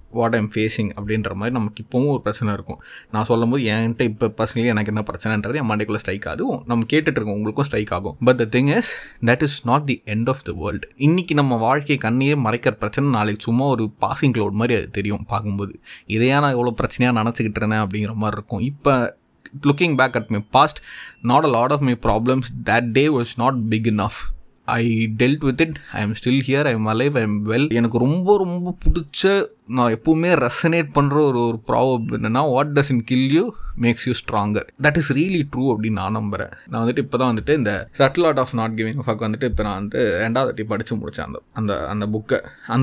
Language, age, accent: Tamil, 20-39, native